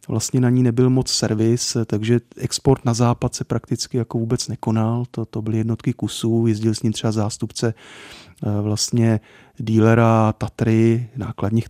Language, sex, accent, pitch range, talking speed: Czech, male, native, 110-120 Hz, 150 wpm